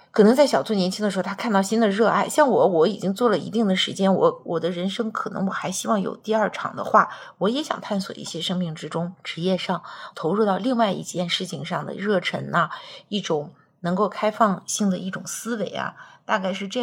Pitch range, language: 180-230 Hz, Chinese